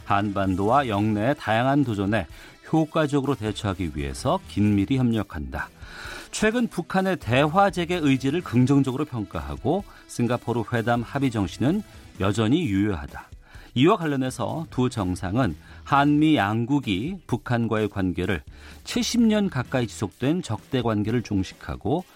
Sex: male